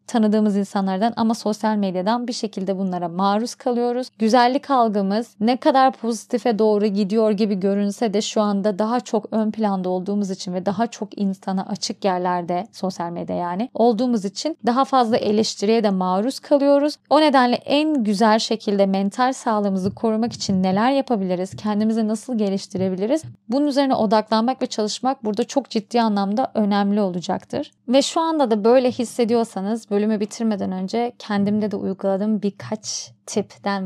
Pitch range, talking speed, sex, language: 190-230 Hz, 150 wpm, female, Turkish